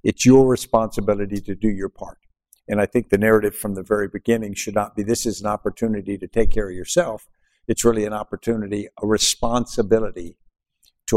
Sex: male